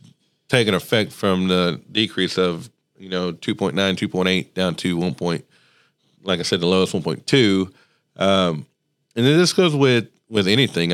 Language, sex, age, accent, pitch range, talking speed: English, male, 40-59, American, 90-115 Hz, 155 wpm